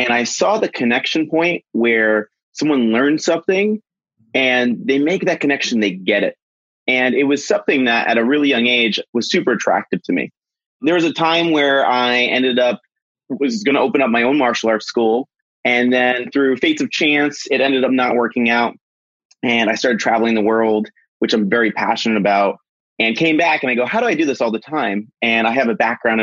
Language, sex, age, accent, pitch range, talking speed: English, male, 30-49, American, 110-145 Hz, 215 wpm